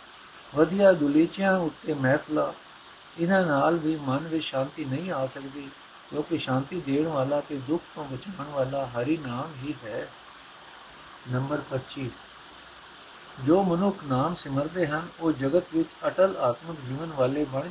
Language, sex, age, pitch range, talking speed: Punjabi, male, 60-79, 130-165 Hz, 145 wpm